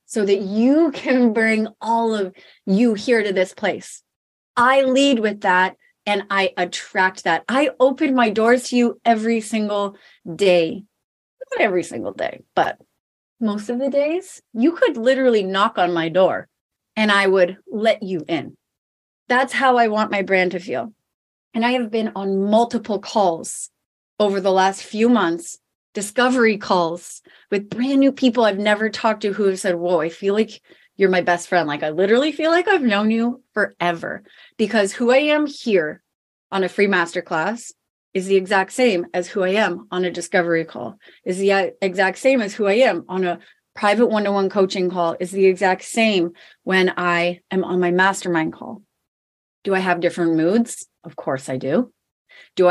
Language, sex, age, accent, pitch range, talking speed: English, female, 30-49, American, 185-235 Hz, 180 wpm